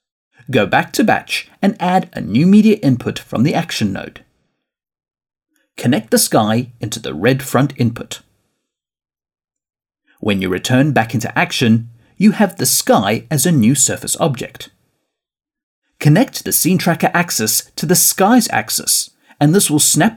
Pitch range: 120-185 Hz